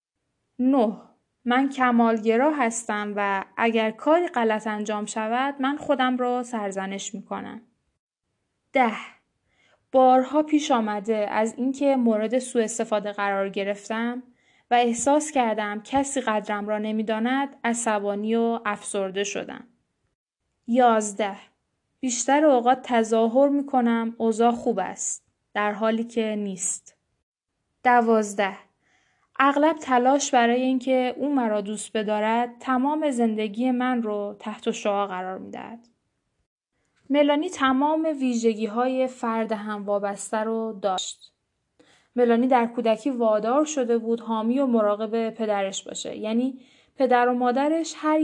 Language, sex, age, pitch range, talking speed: Persian, female, 10-29, 215-260 Hz, 120 wpm